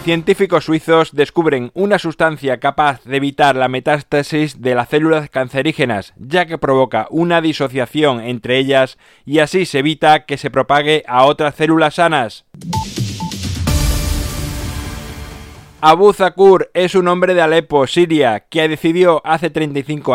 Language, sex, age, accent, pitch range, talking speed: Spanish, male, 20-39, Spanish, 125-160 Hz, 135 wpm